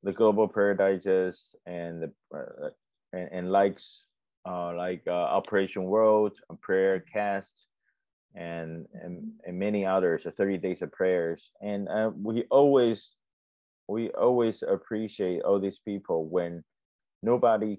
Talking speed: 130 wpm